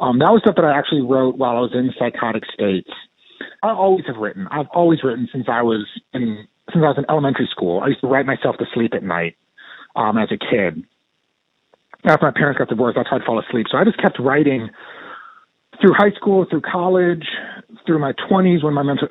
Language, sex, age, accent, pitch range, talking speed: English, male, 30-49, American, 125-175 Hz, 220 wpm